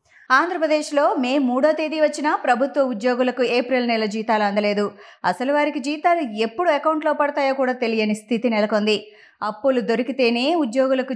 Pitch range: 220-285 Hz